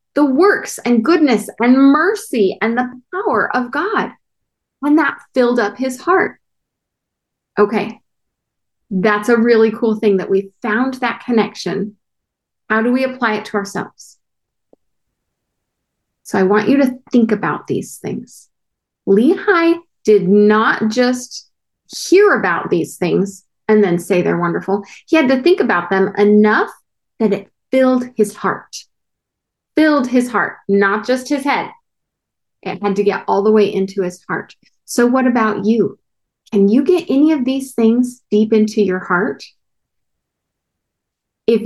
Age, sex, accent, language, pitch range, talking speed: 30-49, female, American, English, 205-275 Hz, 145 wpm